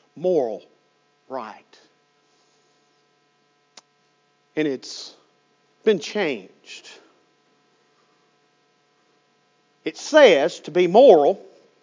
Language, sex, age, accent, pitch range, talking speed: English, male, 50-69, American, 175-280 Hz, 55 wpm